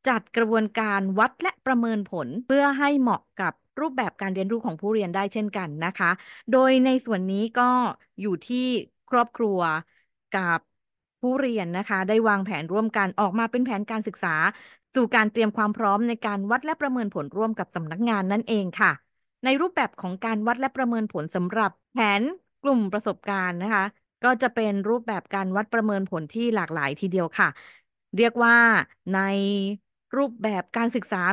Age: 20-39